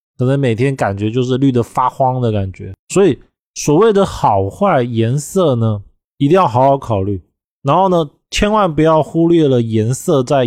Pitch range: 115-160 Hz